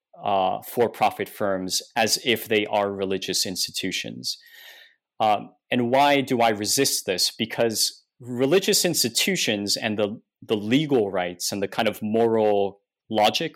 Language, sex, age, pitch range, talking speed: English, male, 30-49, 105-140 Hz, 135 wpm